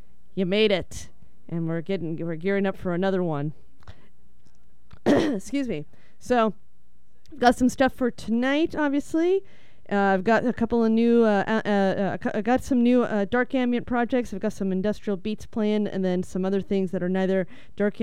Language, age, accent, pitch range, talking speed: English, 30-49, American, 185-225 Hz, 180 wpm